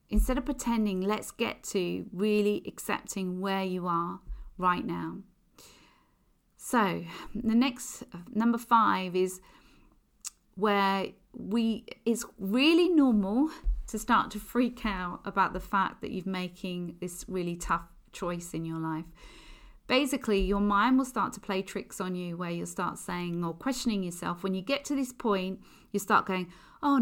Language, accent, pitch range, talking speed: English, British, 180-220 Hz, 155 wpm